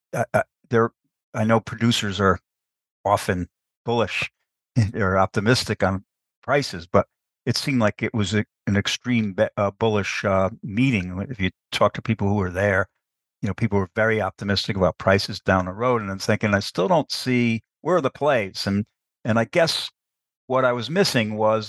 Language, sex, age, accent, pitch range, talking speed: English, male, 60-79, American, 95-115 Hz, 185 wpm